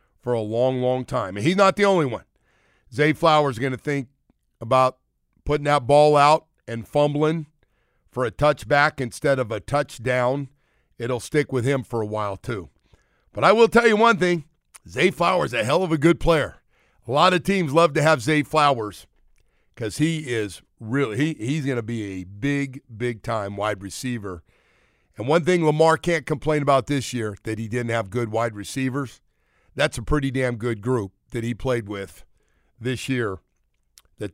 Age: 50-69